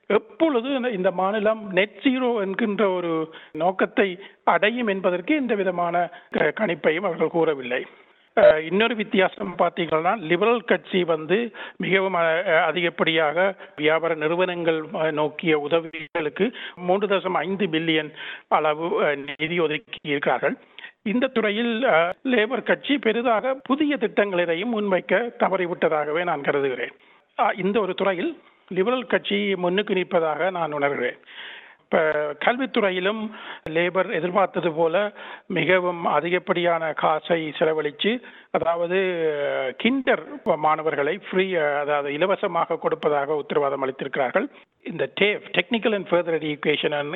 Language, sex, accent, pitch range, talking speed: Tamil, male, native, 160-210 Hz, 100 wpm